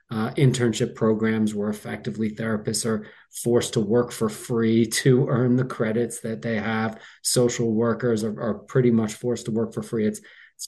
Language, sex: English, male